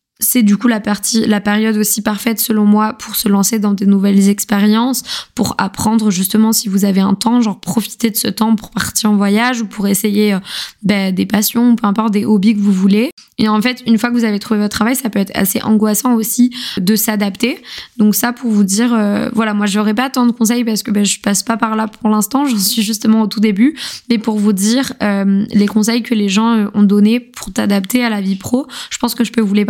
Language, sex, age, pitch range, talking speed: French, female, 20-39, 205-235 Hz, 250 wpm